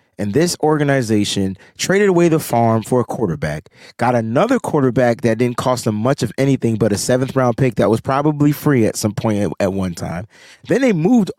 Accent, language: American, English